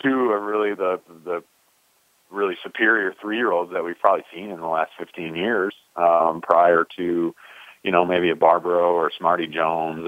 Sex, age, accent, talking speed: male, 40-59, American, 185 wpm